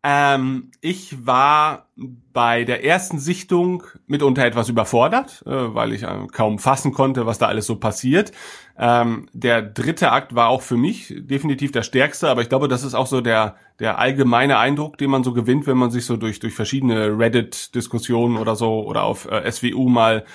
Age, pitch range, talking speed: 30-49, 120-135 Hz, 185 wpm